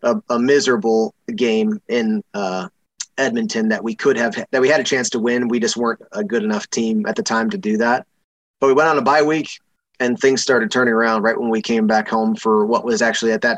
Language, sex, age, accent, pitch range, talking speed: English, male, 20-39, American, 115-140 Hz, 245 wpm